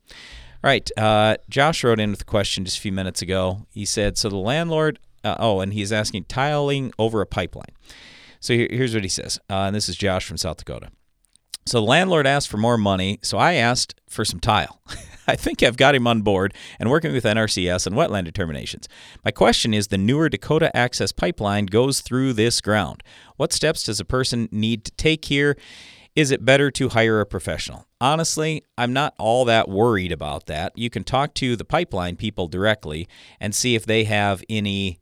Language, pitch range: English, 95-120 Hz